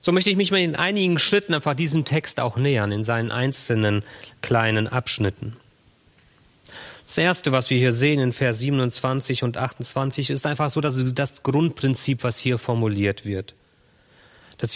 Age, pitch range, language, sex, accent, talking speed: 40-59, 120-150 Hz, German, male, German, 165 wpm